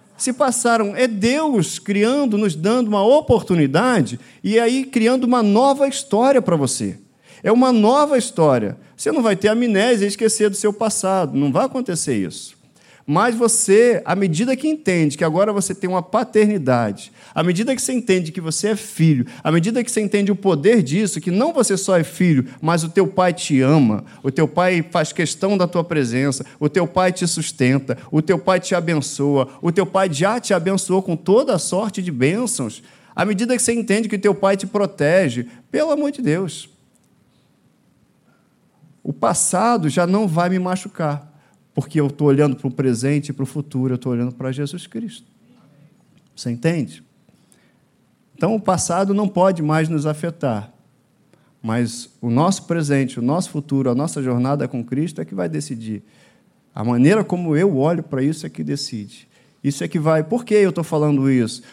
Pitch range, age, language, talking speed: 145-210 Hz, 50-69, Portuguese, 185 wpm